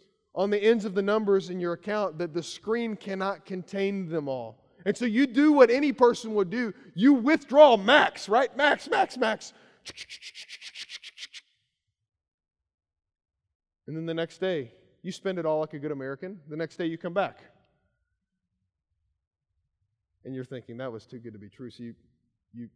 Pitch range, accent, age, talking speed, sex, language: 130-215 Hz, American, 30-49, 170 wpm, male, English